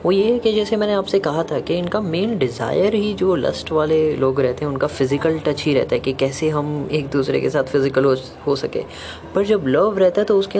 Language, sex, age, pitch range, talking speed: Hindi, female, 10-29, 140-195 Hz, 245 wpm